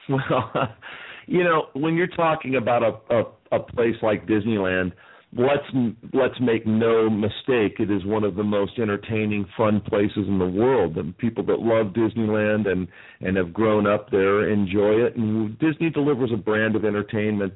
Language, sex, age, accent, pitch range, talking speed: English, male, 50-69, American, 105-140 Hz, 170 wpm